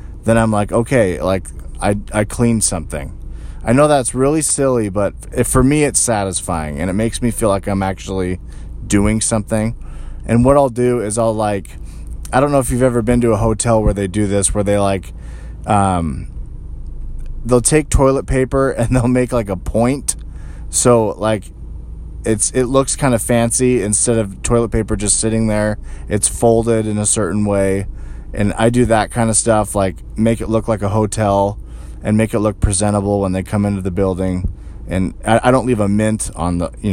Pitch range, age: 85-115 Hz, 20-39